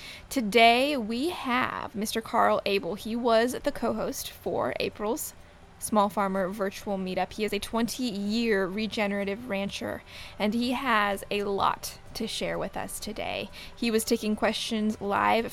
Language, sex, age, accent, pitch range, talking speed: English, female, 20-39, American, 210-255 Hz, 145 wpm